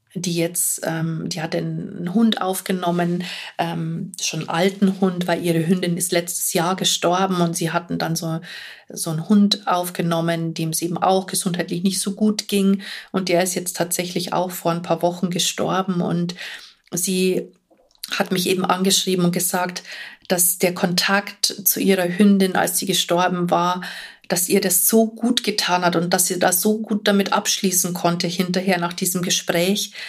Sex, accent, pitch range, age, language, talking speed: female, German, 175-200 Hz, 40-59, German, 170 wpm